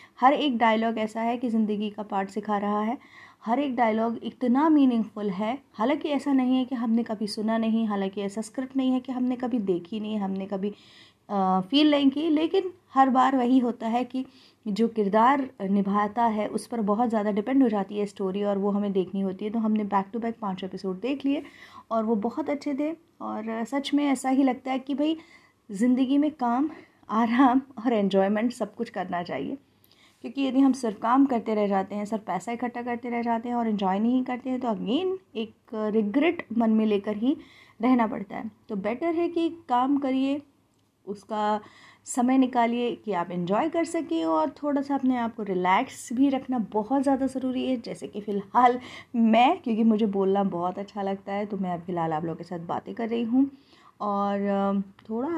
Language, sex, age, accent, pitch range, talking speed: Hindi, female, 20-39, native, 210-265 Hz, 200 wpm